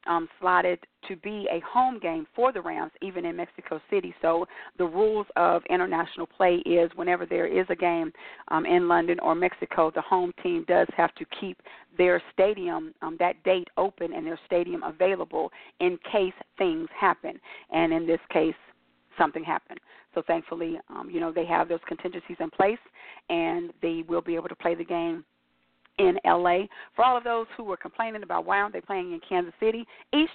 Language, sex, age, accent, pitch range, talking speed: English, female, 40-59, American, 170-250 Hz, 190 wpm